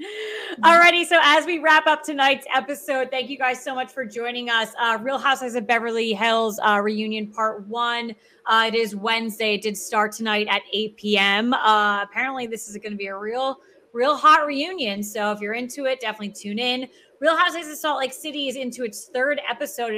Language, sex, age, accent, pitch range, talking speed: English, female, 30-49, American, 210-265 Hz, 205 wpm